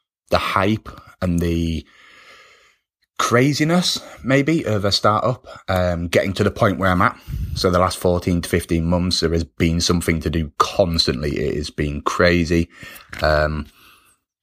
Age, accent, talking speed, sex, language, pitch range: 30-49, British, 150 wpm, male, English, 80-90 Hz